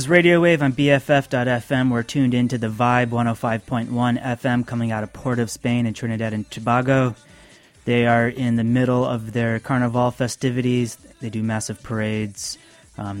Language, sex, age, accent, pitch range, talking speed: English, male, 30-49, American, 110-130 Hz, 170 wpm